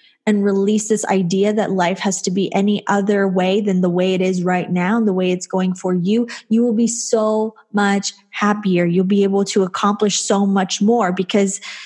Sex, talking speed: female, 210 wpm